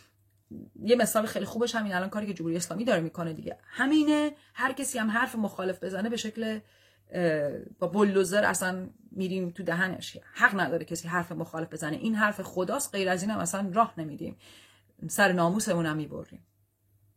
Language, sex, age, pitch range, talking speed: Persian, female, 30-49, 170-225 Hz, 165 wpm